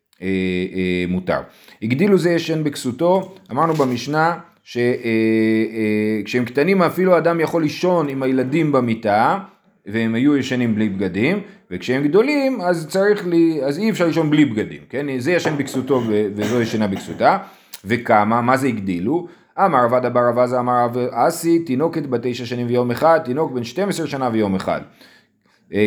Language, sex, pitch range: Hebrew, male, 120-175 Hz